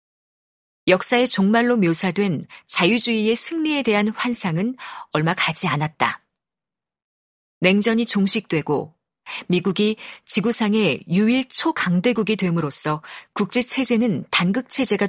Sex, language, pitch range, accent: female, Korean, 185-240 Hz, native